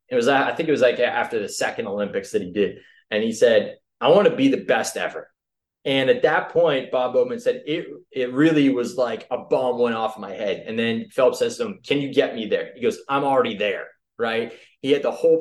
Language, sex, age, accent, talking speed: English, male, 20-39, American, 250 wpm